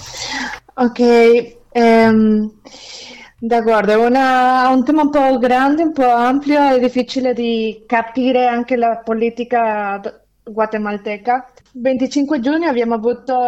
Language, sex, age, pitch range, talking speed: Italian, female, 20-39, 220-250 Hz, 105 wpm